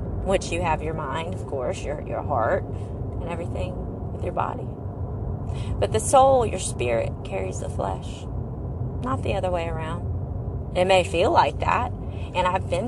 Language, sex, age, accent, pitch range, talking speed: English, female, 30-49, American, 90-110 Hz, 170 wpm